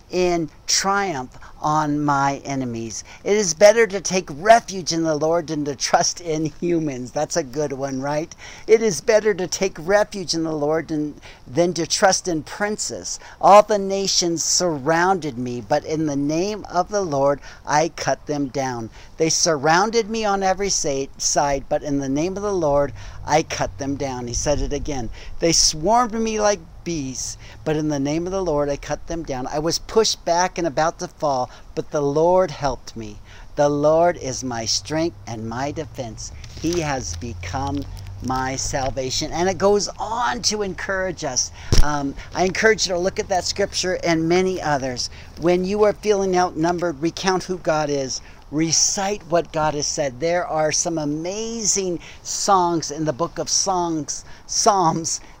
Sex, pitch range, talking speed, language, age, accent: male, 140-180 Hz, 175 wpm, English, 50-69, American